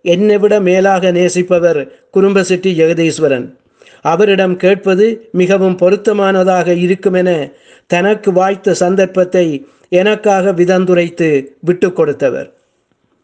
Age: 50-69